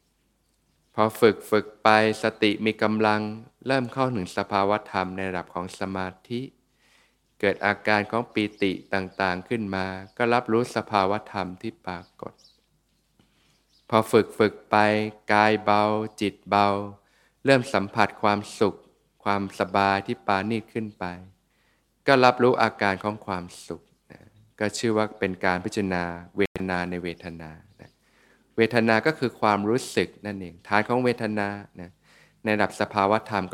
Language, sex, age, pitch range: Thai, male, 20-39, 95-110 Hz